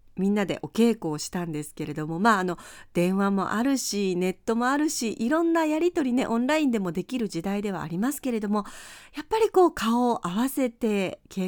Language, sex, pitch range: Japanese, female, 180-275 Hz